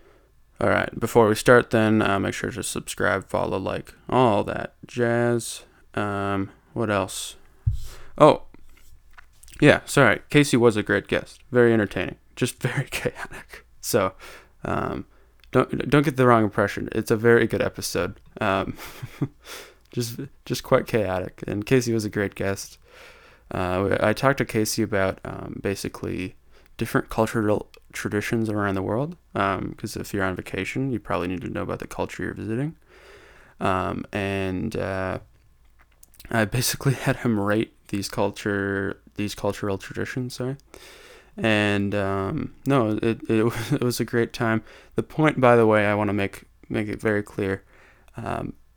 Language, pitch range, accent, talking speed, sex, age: English, 100-120 Hz, American, 155 wpm, male, 20-39